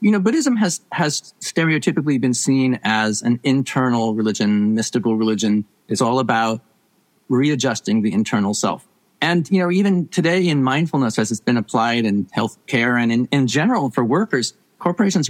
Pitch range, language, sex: 125-190 Hz, English, male